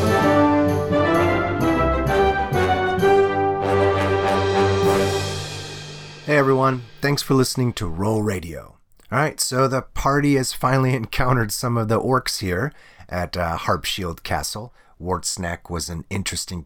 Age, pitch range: 30-49, 90-130 Hz